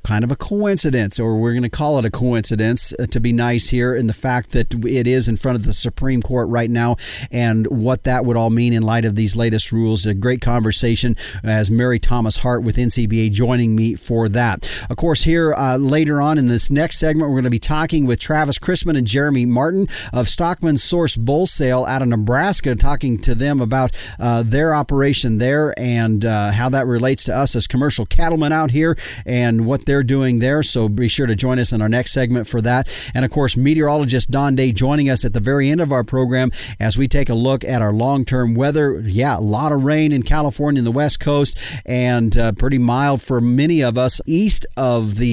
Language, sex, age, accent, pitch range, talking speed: English, male, 40-59, American, 115-150 Hz, 220 wpm